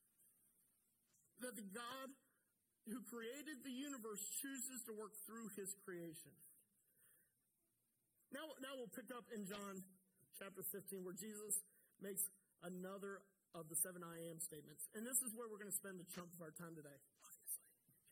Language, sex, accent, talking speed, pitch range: English, male, American, 150 wpm, 170-215 Hz